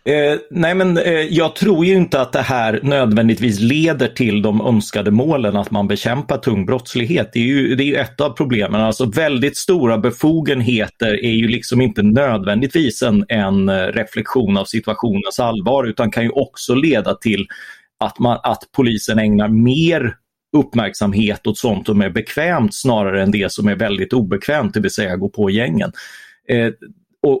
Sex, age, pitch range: male, 30-49, 105-145 Hz